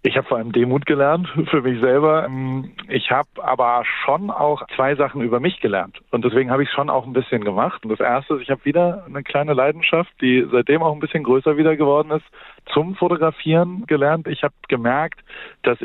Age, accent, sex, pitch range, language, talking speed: 40-59, German, male, 125-155 Hz, German, 205 wpm